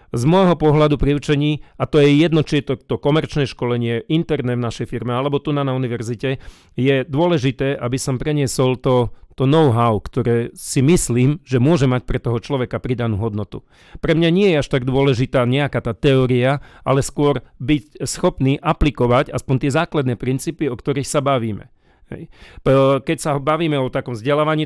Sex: male